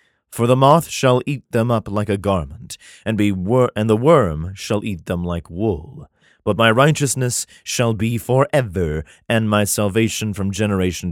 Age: 30-49